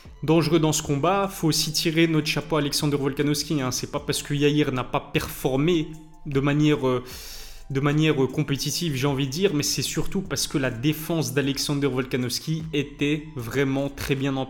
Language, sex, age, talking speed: French, male, 20-39, 185 wpm